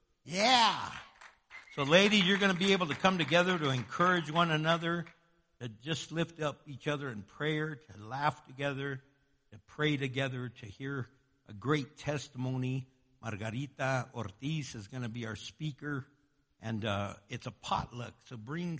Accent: American